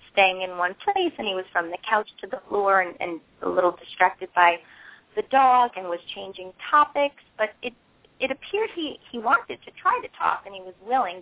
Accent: American